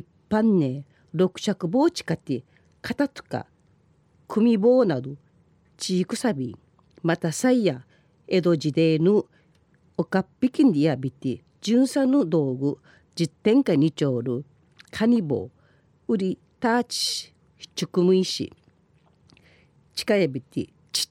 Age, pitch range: 50-69, 150-215 Hz